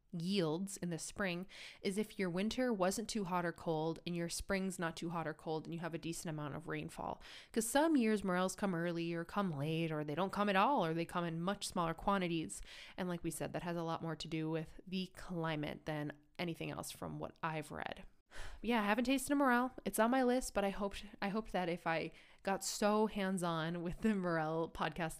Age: 20-39